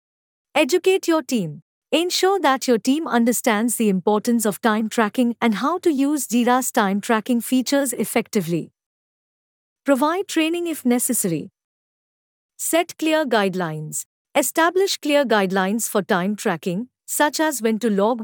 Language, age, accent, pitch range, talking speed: English, 50-69, Indian, 210-280 Hz, 130 wpm